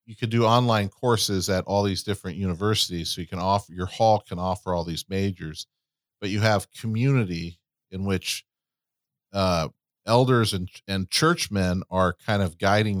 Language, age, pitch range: English, 40-59, 95-120 Hz